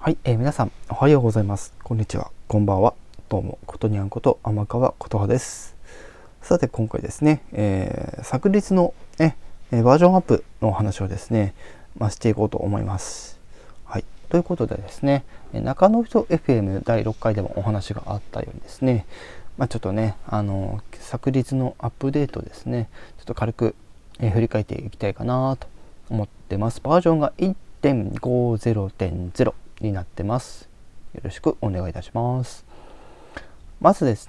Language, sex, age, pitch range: Japanese, male, 20-39, 100-135 Hz